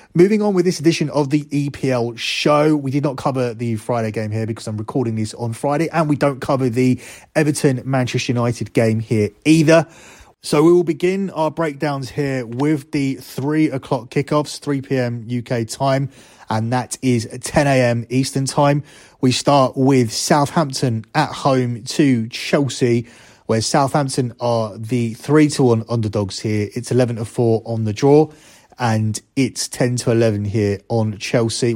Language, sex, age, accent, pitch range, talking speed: English, male, 30-49, British, 115-135 Hz, 155 wpm